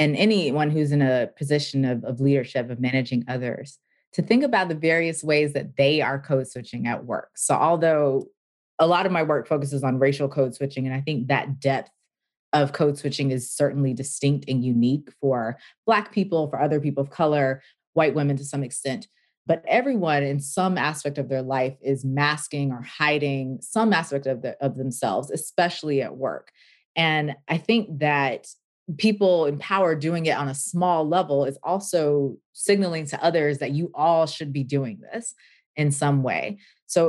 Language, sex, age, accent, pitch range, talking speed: English, female, 20-39, American, 135-160 Hz, 180 wpm